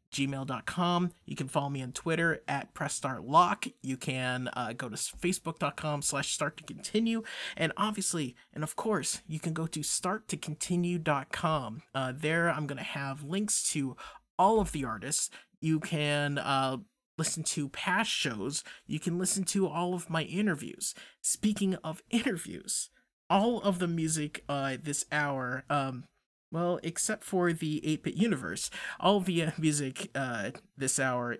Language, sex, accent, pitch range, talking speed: English, male, American, 135-175 Hz, 155 wpm